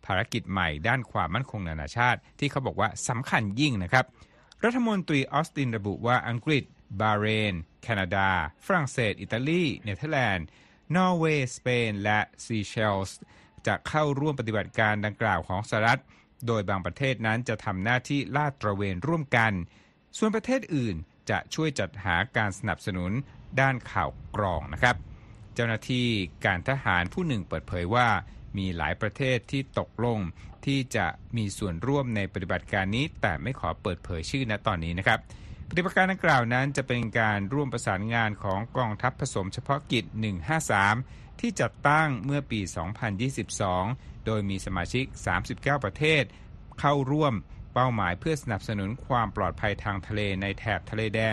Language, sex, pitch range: Thai, male, 100-130 Hz